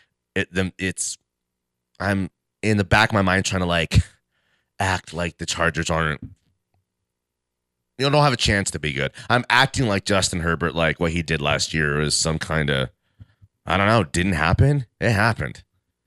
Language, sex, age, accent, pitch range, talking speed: English, male, 30-49, American, 85-135 Hz, 185 wpm